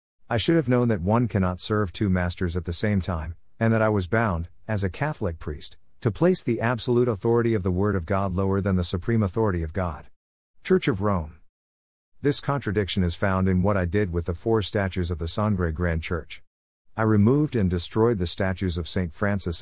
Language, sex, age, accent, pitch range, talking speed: English, male, 50-69, American, 85-110 Hz, 210 wpm